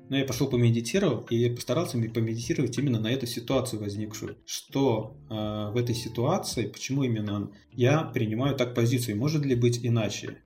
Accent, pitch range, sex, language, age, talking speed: native, 110-125 Hz, male, Russian, 20-39, 155 wpm